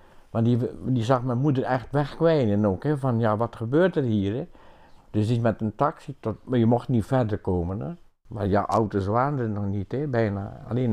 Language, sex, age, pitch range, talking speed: Dutch, male, 60-79, 110-145 Hz, 220 wpm